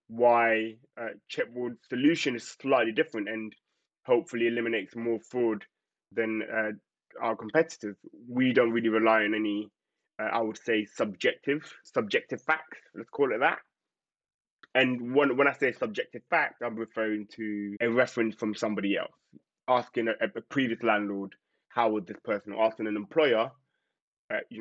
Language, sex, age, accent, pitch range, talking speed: English, male, 20-39, British, 110-125 Hz, 155 wpm